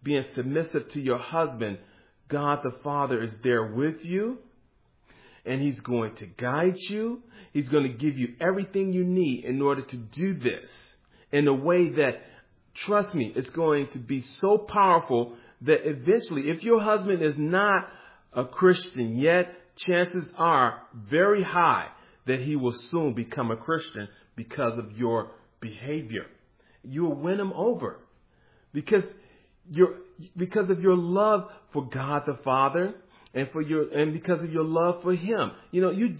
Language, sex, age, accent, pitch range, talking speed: English, male, 40-59, American, 130-180 Hz, 160 wpm